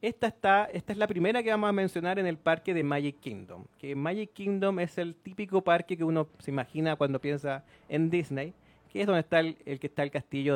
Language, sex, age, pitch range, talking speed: Spanish, male, 30-49, 135-180 Hz, 235 wpm